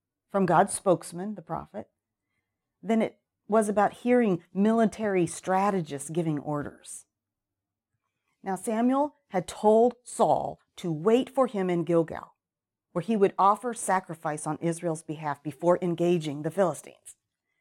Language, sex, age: English, female, 40-59